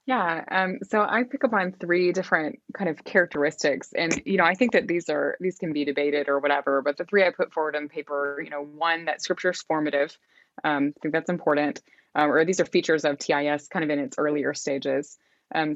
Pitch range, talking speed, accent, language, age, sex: 145-180 Hz, 225 wpm, American, English, 20-39, female